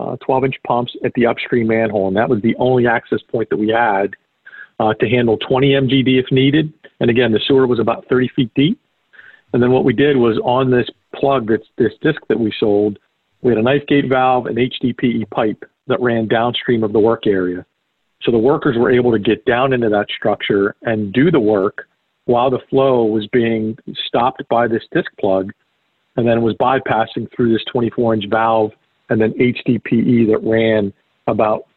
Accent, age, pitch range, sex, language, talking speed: American, 50-69, 110-130 Hz, male, English, 195 wpm